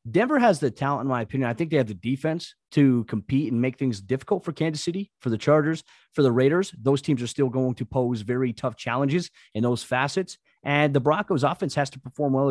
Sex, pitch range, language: male, 125-155 Hz, English